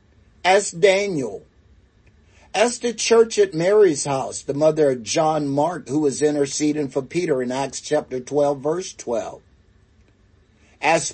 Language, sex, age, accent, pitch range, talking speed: English, male, 60-79, American, 120-185 Hz, 135 wpm